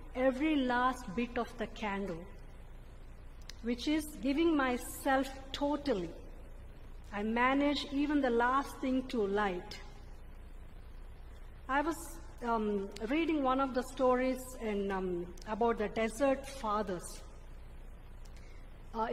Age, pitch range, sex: 50-69, 205-255 Hz, female